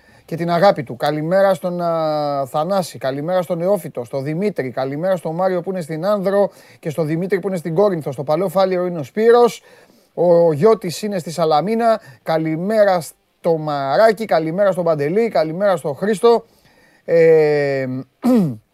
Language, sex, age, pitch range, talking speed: Greek, male, 30-49, 135-190 Hz, 155 wpm